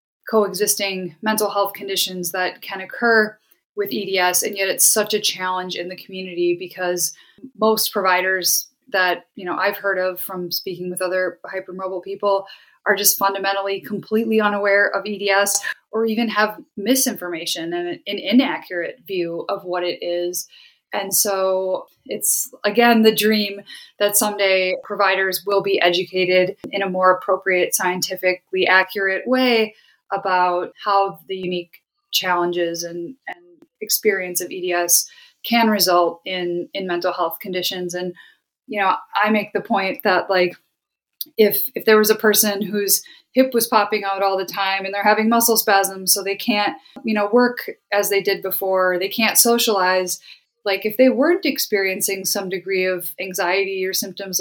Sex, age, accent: female, 20-39, American